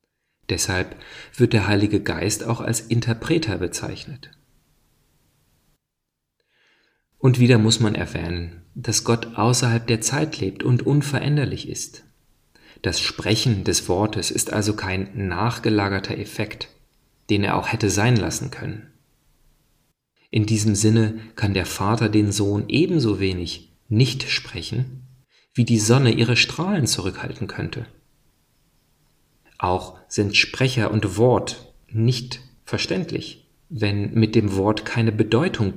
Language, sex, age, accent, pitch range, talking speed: German, male, 40-59, German, 100-130 Hz, 120 wpm